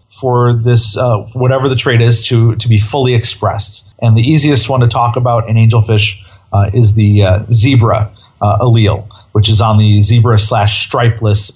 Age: 40-59